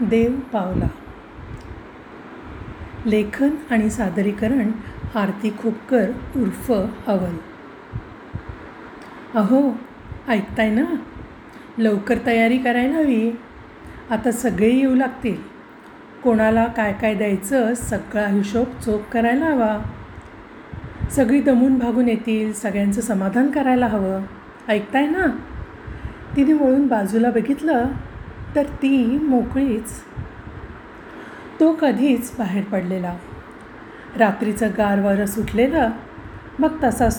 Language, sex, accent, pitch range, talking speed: Marathi, female, native, 210-255 Hz, 90 wpm